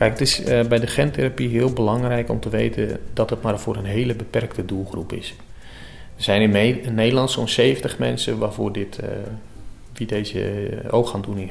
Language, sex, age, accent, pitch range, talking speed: Dutch, male, 40-59, Dutch, 100-115 Hz, 190 wpm